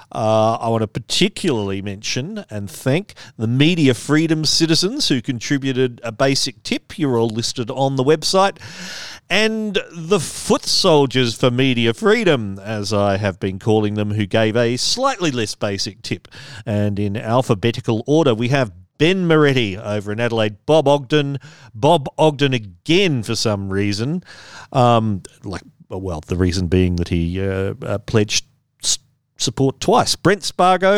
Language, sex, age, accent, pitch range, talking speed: English, male, 40-59, Australian, 110-165 Hz, 150 wpm